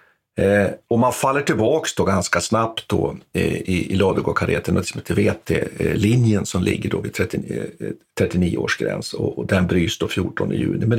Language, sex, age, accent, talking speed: Swedish, male, 60-79, native, 195 wpm